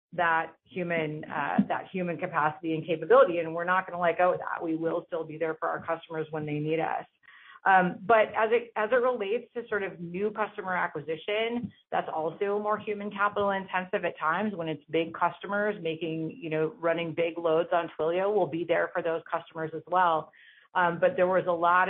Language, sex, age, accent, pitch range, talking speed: English, female, 30-49, American, 160-180 Hz, 210 wpm